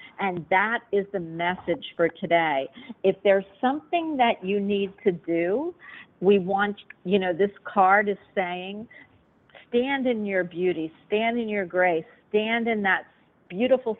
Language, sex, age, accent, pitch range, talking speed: English, female, 50-69, American, 170-220 Hz, 150 wpm